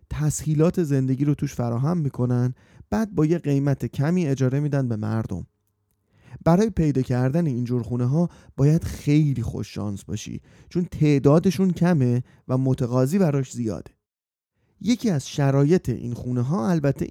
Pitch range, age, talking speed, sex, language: 125-165 Hz, 30-49, 135 wpm, male, Persian